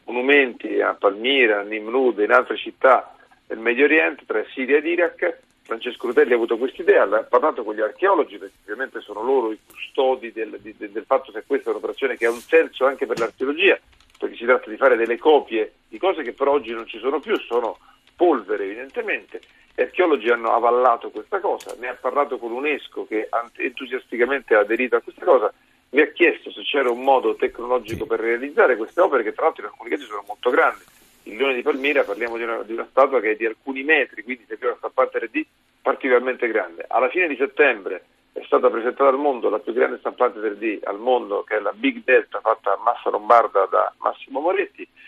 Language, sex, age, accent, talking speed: Italian, male, 40-59, native, 205 wpm